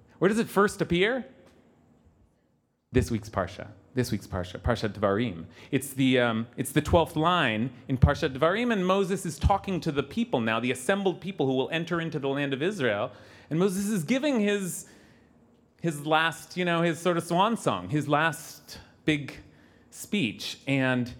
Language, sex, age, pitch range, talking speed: English, male, 30-49, 125-185 Hz, 175 wpm